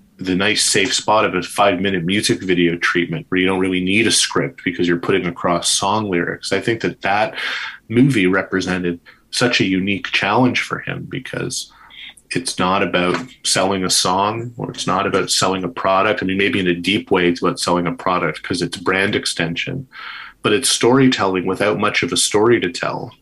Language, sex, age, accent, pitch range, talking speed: English, male, 30-49, American, 90-105 Hz, 195 wpm